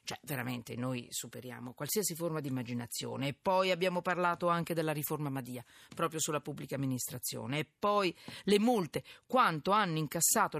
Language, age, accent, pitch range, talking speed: Italian, 50-69, native, 140-190 Hz, 155 wpm